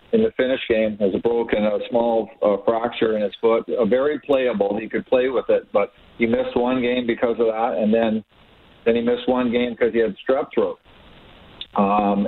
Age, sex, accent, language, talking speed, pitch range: 50-69, male, American, English, 210 wpm, 110-125 Hz